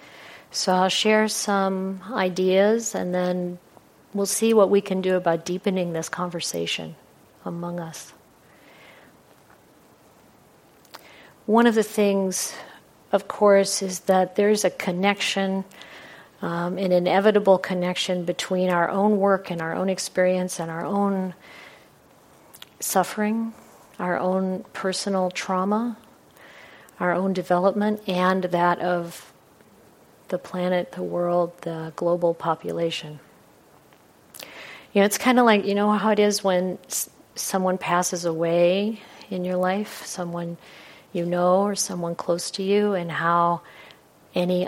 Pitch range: 170-195 Hz